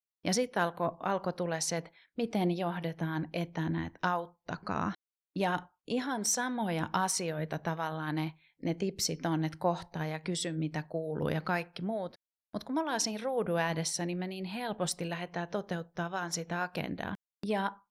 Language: Finnish